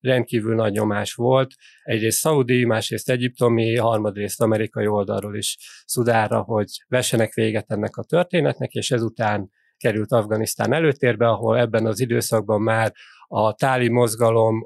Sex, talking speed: male, 130 wpm